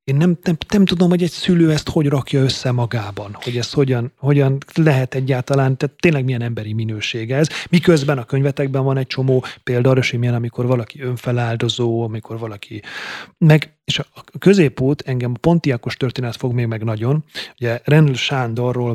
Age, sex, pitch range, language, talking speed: 30-49, male, 120-145 Hz, Hungarian, 175 wpm